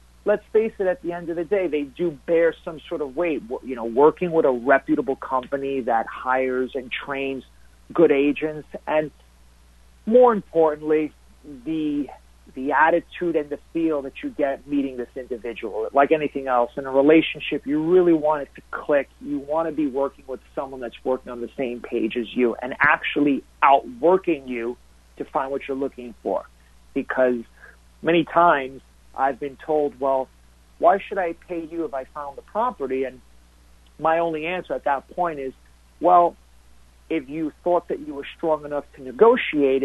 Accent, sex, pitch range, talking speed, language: American, male, 125-165 Hz, 175 wpm, English